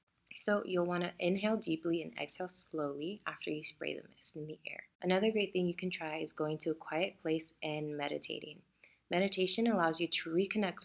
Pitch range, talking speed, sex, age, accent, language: 155-195 Hz, 195 wpm, female, 20-39, American, English